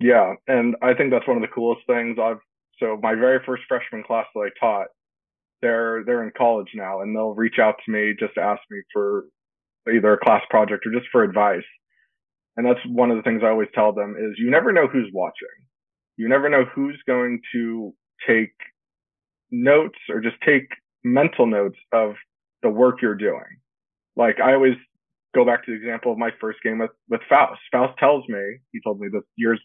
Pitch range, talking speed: 110-125 Hz, 205 wpm